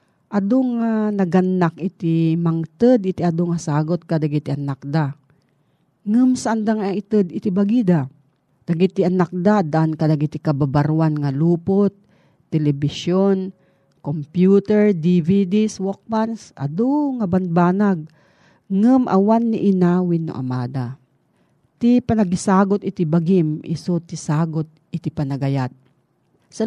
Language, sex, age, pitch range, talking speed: Filipino, female, 40-59, 155-200 Hz, 115 wpm